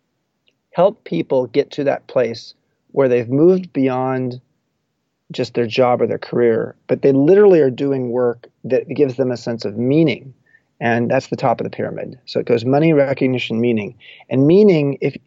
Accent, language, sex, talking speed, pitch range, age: American, English, male, 175 wpm, 120-150 Hz, 30-49